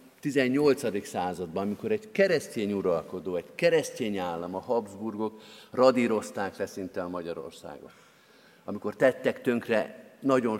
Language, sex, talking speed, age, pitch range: Hungarian, male, 110 wpm, 50-69, 105-130 Hz